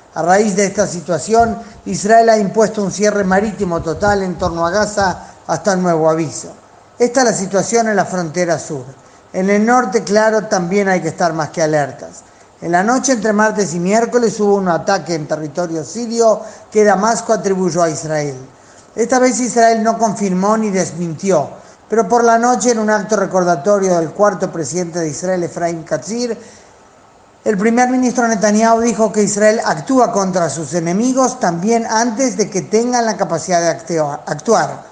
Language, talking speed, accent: Spanish, 170 wpm, Argentinian